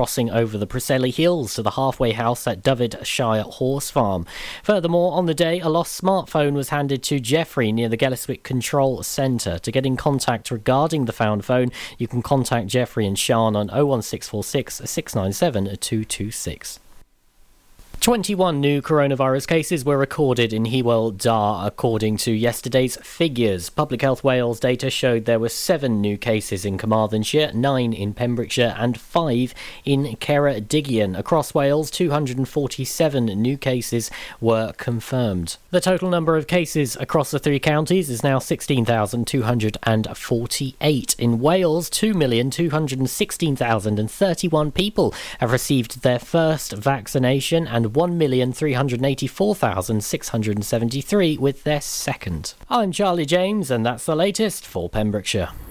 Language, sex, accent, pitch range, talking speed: English, male, British, 115-150 Hz, 130 wpm